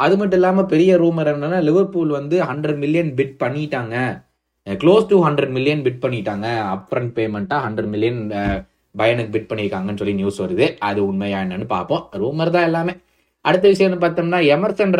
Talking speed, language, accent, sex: 150 wpm, Tamil, native, male